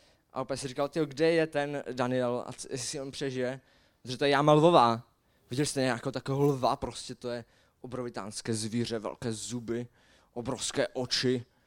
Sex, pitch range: male, 125-155 Hz